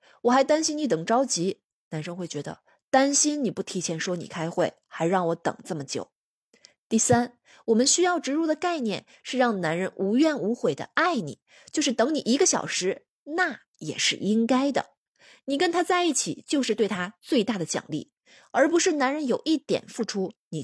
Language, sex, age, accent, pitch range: Chinese, female, 20-39, native, 180-275 Hz